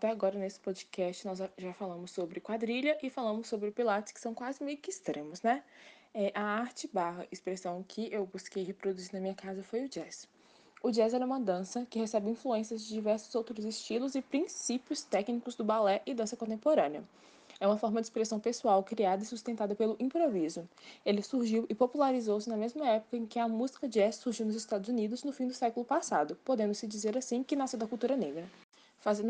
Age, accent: 20-39, Brazilian